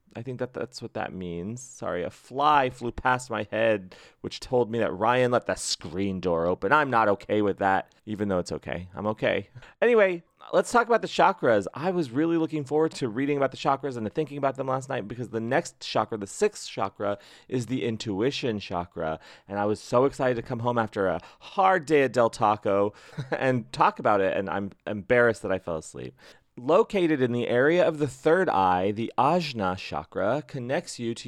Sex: male